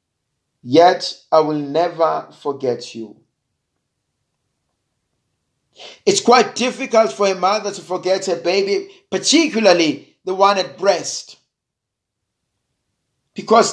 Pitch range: 135-190 Hz